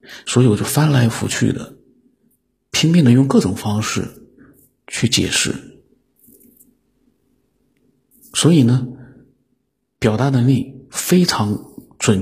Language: Chinese